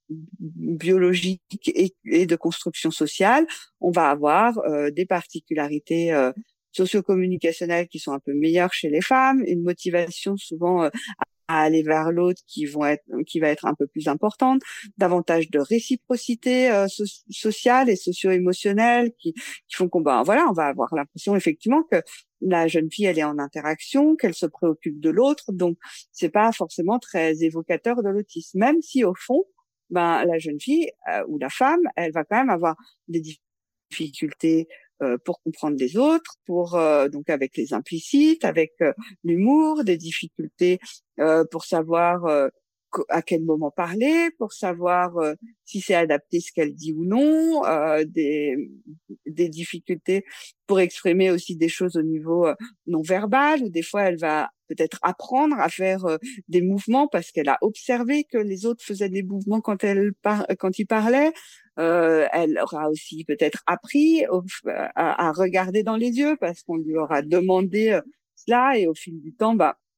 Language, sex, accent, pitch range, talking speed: French, female, French, 160-220 Hz, 170 wpm